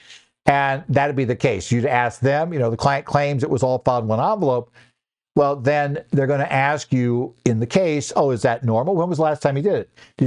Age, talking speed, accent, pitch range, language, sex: 60-79, 255 wpm, American, 120-150 Hz, English, male